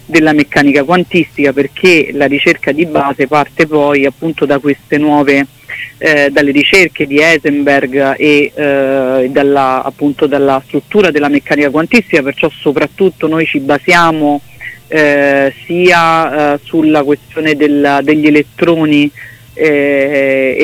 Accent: native